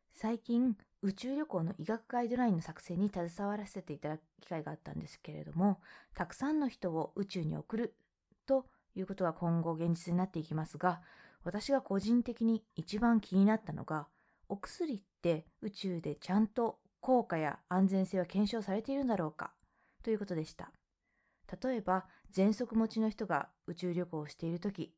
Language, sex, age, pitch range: Japanese, female, 20-39, 175-225 Hz